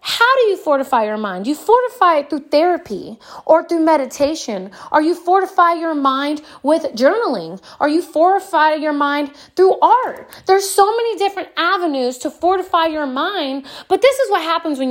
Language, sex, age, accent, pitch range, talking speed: English, female, 30-49, American, 285-380 Hz, 175 wpm